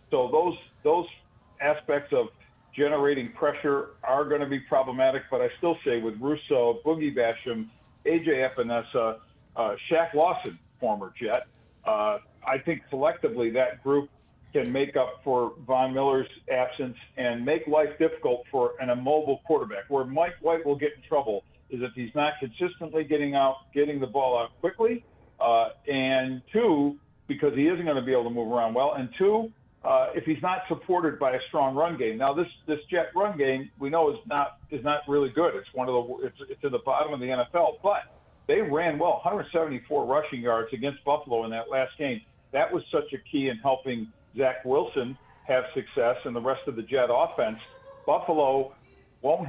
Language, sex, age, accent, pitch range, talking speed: English, male, 50-69, American, 130-160 Hz, 185 wpm